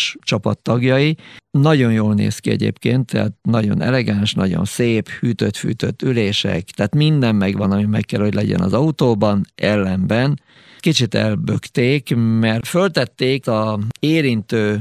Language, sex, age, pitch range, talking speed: Hungarian, male, 50-69, 105-130 Hz, 120 wpm